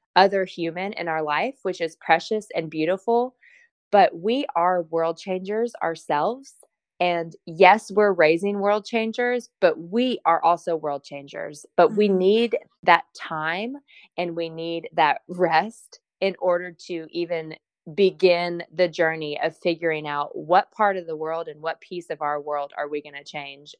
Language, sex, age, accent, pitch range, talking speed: English, female, 20-39, American, 155-195 Hz, 160 wpm